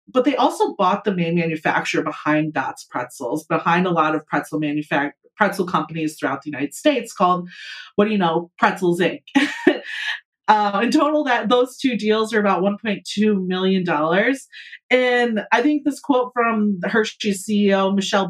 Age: 30-49